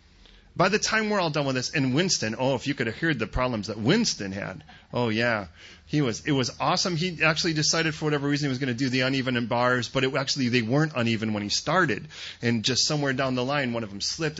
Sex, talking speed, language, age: male, 260 wpm, English, 30-49